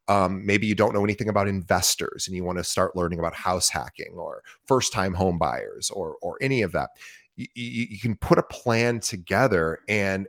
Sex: male